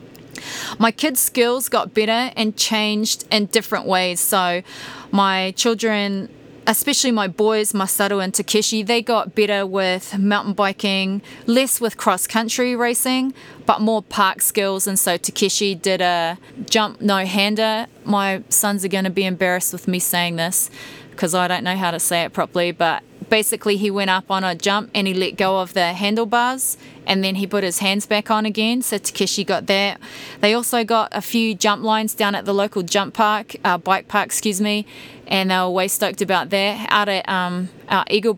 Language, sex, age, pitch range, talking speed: English, female, 20-39, 185-215 Hz, 185 wpm